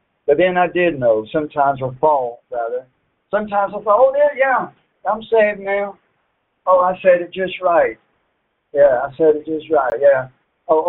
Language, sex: English, male